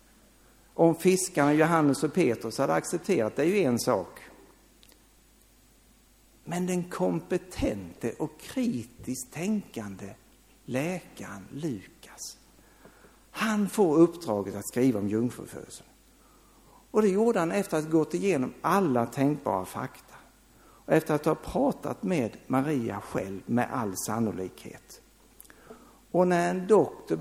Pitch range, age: 115-170 Hz, 60-79